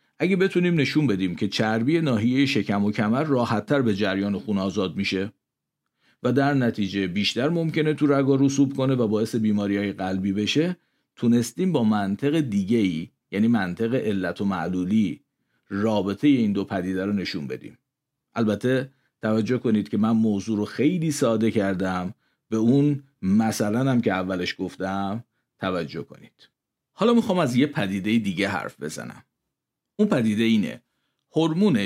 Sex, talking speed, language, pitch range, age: male, 150 wpm, Persian, 100-140 Hz, 50-69